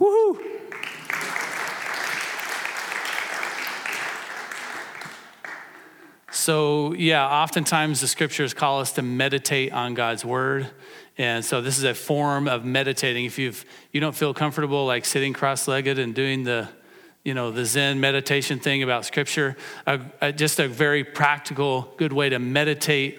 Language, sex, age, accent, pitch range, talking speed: English, male, 40-59, American, 135-155 Hz, 130 wpm